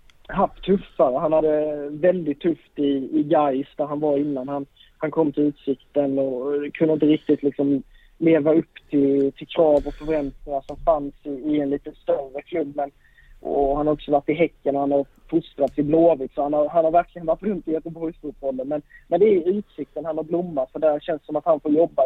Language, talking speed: Swedish, 220 wpm